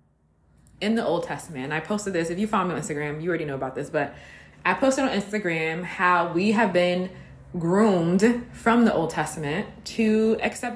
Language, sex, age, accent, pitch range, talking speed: English, female, 20-39, American, 155-215 Hz, 190 wpm